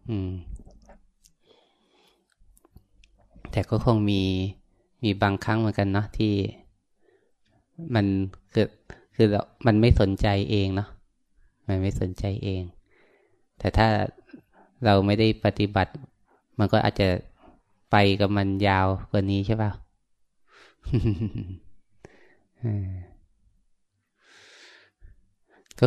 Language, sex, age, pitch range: Thai, male, 20-39, 95-110 Hz